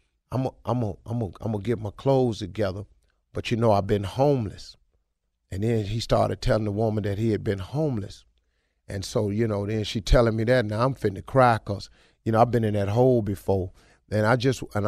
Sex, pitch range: male, 100-135 Hz